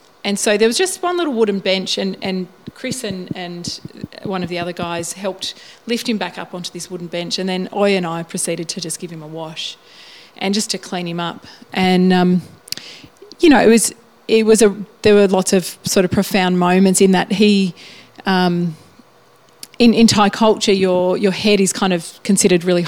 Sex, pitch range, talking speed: female, 180-215 Hz, 205 wpm